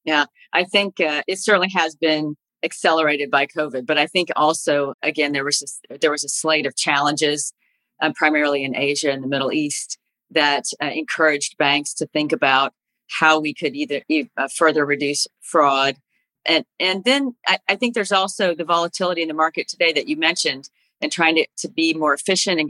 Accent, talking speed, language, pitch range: American, 195 wpm, English, 145-165 Hz